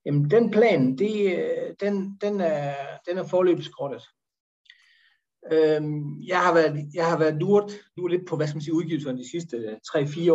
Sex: male